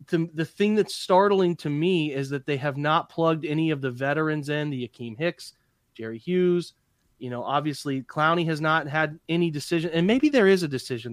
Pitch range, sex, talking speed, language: 135-170 Hz, male, 200 wpm, English